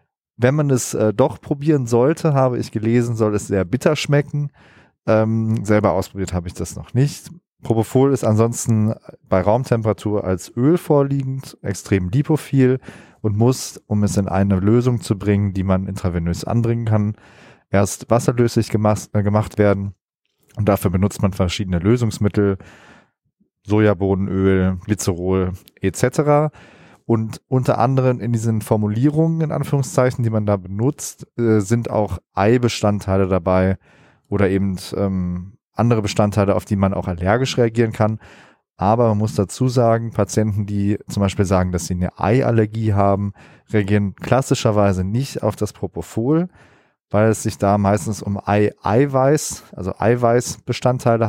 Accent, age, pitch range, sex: German, 30-49, 100-125 Hz, male